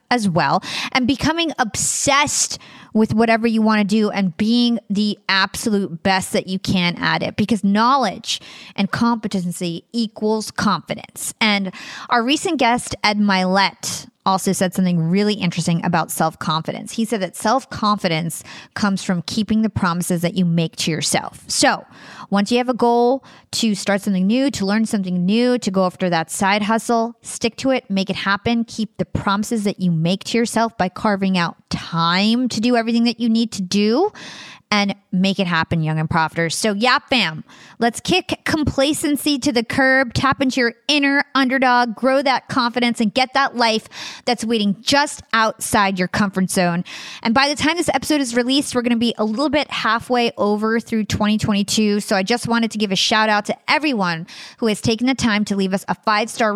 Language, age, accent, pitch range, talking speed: English, 20-39, American, 195-240 Hz, 190 wpm